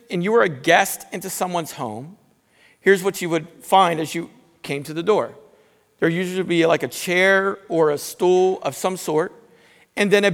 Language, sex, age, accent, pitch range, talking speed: English, male, 50-69, American, 175-225 Hz, 205 wpm